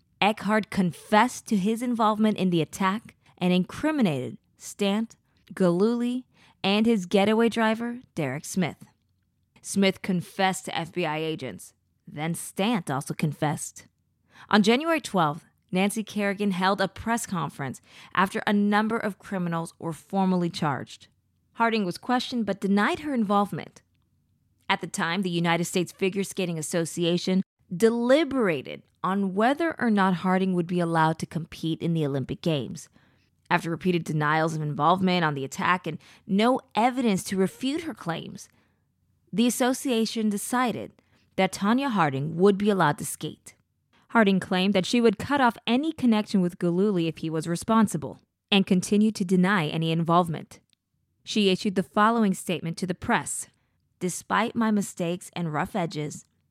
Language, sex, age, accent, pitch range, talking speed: English, female, 20-39, American, 165-215 Hz, 145 wpm